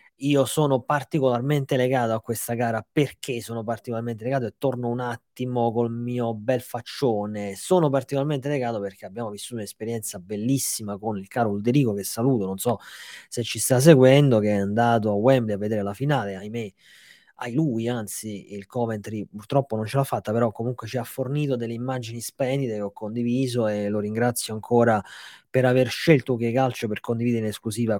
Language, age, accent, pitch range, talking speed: Italian, 20-39, native, 110-135 Hz, 180 wpm